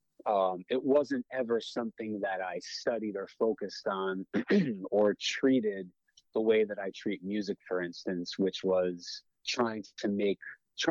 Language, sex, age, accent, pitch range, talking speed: English, male, 30-49, American, 90-110 Hz, 150 wpm